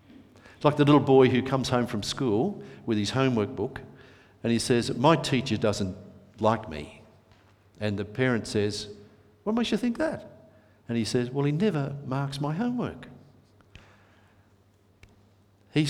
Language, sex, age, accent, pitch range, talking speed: English, male, 50-69, Australian, 105-135 Hz, 155 wpm